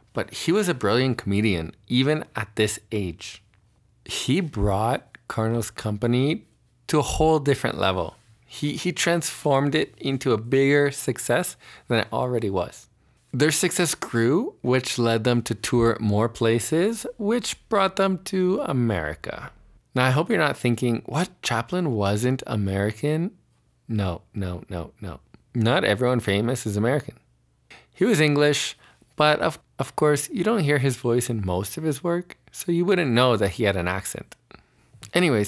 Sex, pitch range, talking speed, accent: male, 105-145 Hz, 155 wpm, American